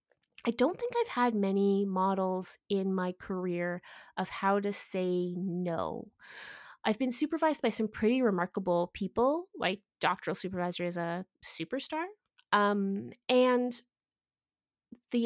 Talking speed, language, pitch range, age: 125 wpm, English, 180-255 Hz, 20-39